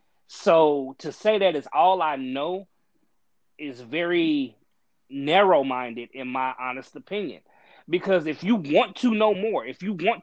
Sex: male